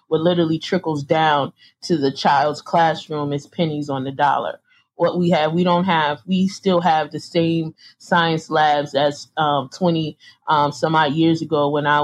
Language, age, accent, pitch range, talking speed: English, 30-49, American, 145-170 Hz, 180 wpm